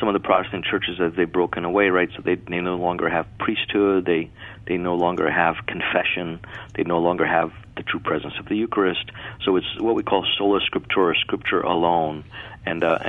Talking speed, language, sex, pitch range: 200 wpm, English, male, 90-110 Hz